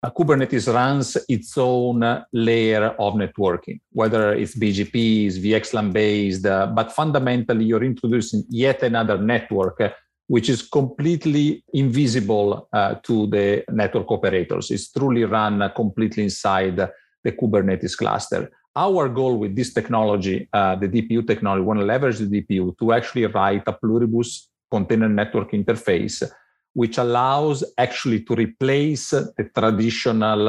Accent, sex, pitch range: Italian, male, 105-125 Hz